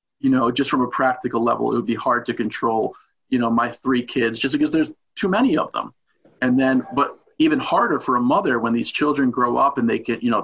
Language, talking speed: English, 245 wpm